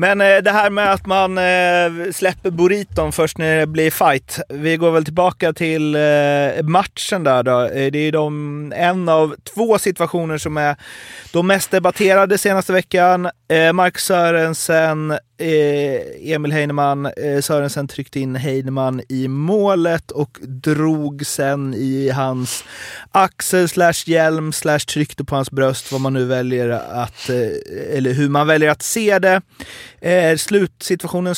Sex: male